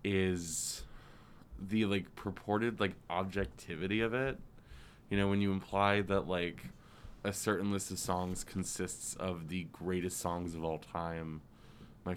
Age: 20-39